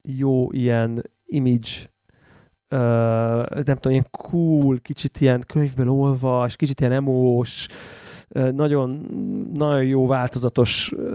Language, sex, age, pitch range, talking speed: Hungarian, male, 30-49, 125-155 Hz, 95 wpm